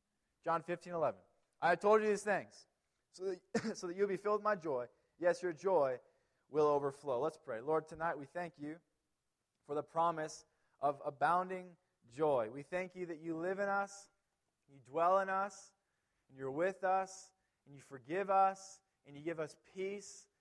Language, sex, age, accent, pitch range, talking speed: English, male, 20-39, American, 150-185 Hz, 185 wpm